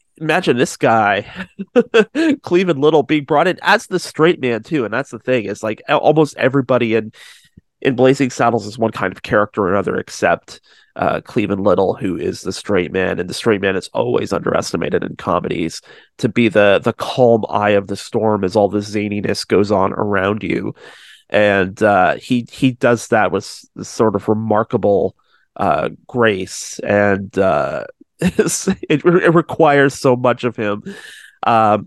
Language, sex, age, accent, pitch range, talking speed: English, male, 30-49, American, 105-125 Hz, 170 wpm